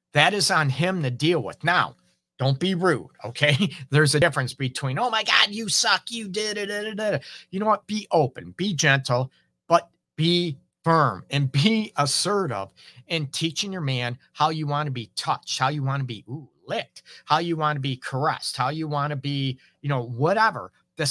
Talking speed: 200 wpm